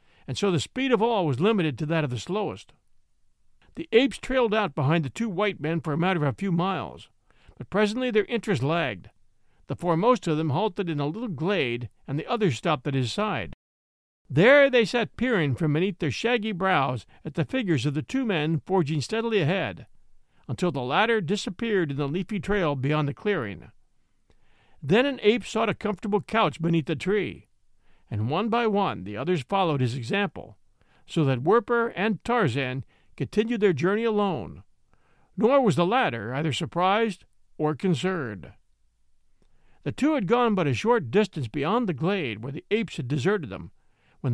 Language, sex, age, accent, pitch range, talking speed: English, male, 50-69, American, 140-215 Hz, 180 wpm